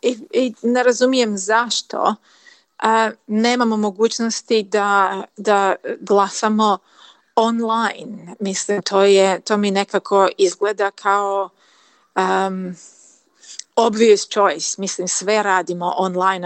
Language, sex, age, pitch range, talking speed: Croatian, female, 30-49, 195-230 Hz, 100 wpm